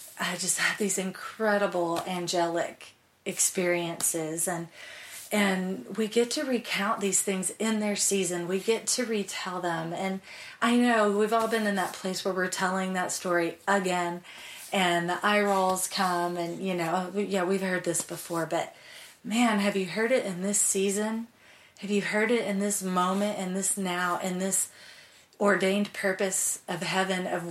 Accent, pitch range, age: American, 175-200 Hz, 30-49